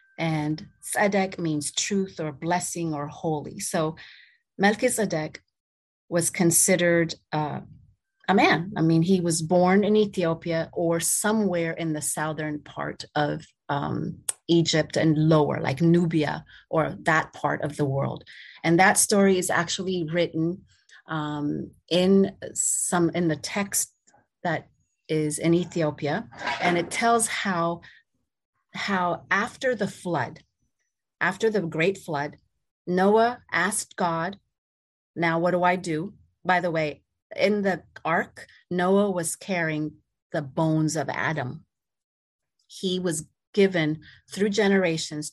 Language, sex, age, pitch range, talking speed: English, female, 30-49, 155-185 Hz, 125 wpm